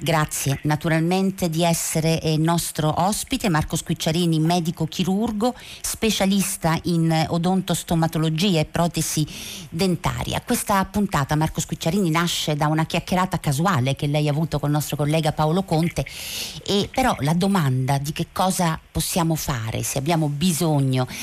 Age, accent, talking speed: 50-69, native, 135 wpm